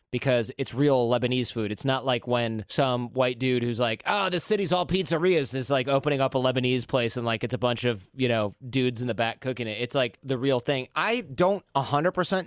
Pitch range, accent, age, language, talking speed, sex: 125-150 Hz, American, 30-49, English, 225 wpm, male